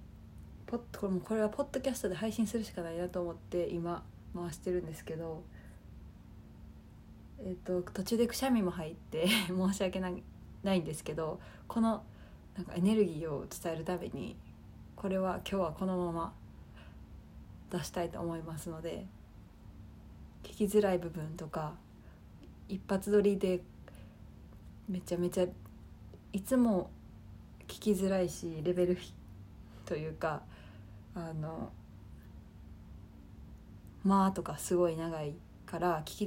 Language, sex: Japanese, female